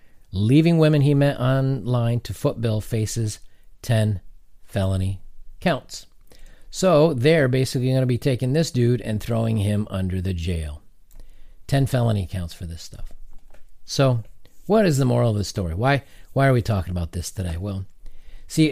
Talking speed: 160 wpm